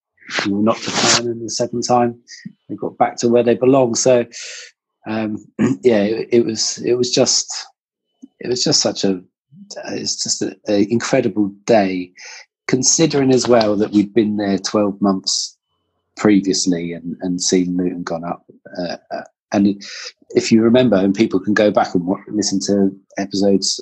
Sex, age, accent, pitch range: male, 40-59, British, 100-120 Hz